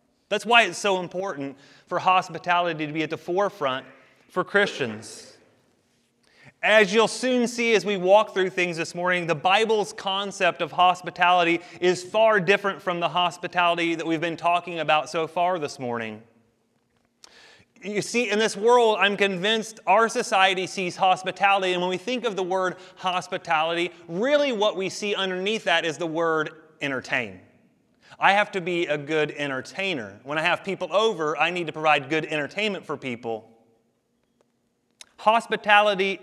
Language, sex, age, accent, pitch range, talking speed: English, male, 30-49, American, 160-195 Hz, 155 wpm